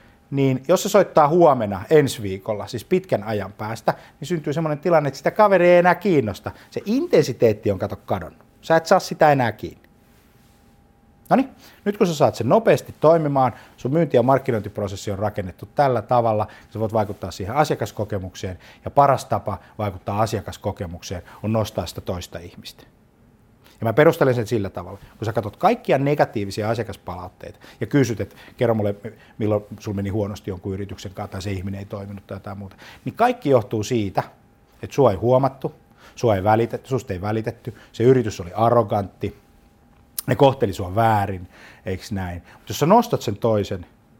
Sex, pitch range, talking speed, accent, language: male, 100-130 Hz, 170 wpm, native, Finnish